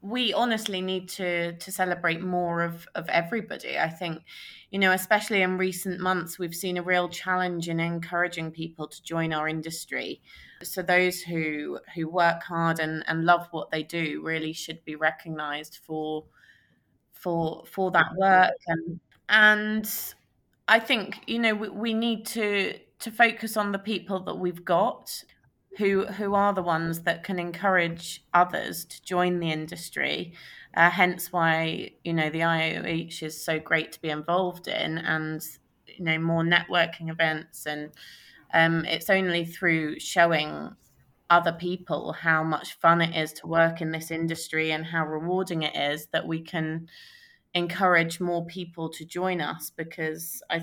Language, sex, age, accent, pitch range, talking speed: English, female, 20-39, British, 160-185 Hz, 160 wpm